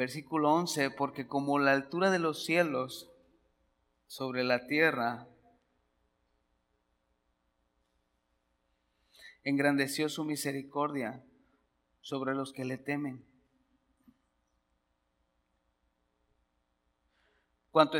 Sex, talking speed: male, 70 wpm